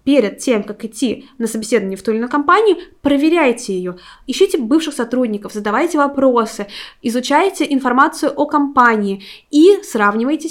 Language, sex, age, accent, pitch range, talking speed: Russian, female, 20-39, native, 205-260 Hz, 135 wpm